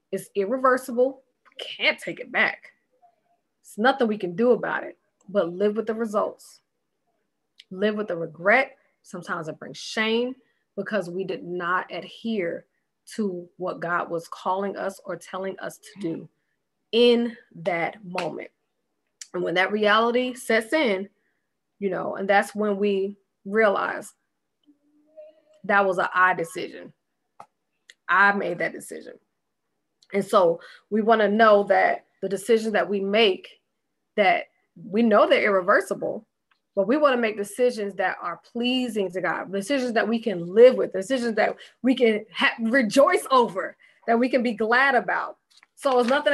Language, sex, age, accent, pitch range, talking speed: English, female, 20-39, American, 200-275 Hz, 150 wpm